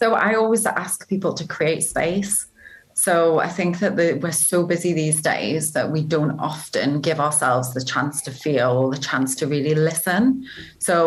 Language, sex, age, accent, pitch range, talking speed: English, female, 30-49, British, 155-185 Hz, 180 wpm